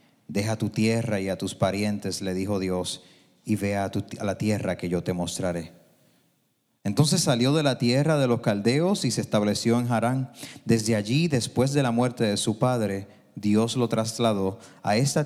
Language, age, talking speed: Spanish, 30-49, 185 wpm